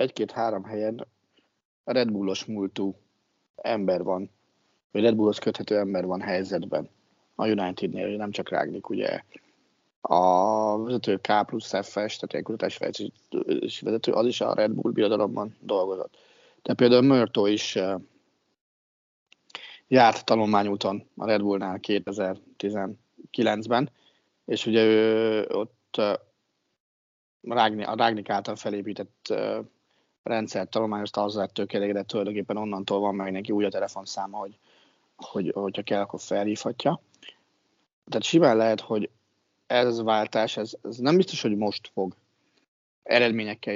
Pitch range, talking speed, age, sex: 100-115 Hz, 120 wpm, 30-49, male